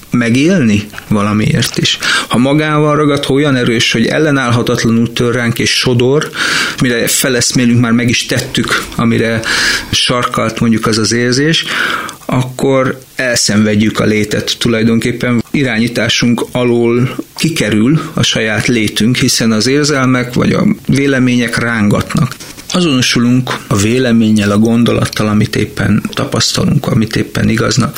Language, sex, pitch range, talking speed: Hungarian, male, 110-125 Hz, 115 wpm